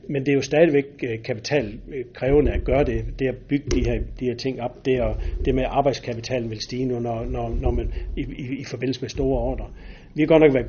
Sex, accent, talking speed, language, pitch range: male, native, 230 wpm, Danish, 115-140 Hz